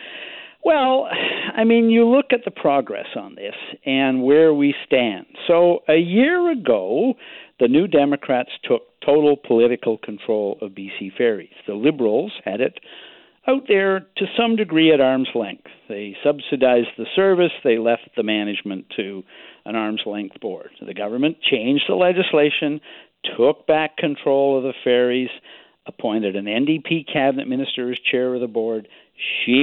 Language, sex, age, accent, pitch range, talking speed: English, male, 60-79, American, 115-165 Hz, 150 wpm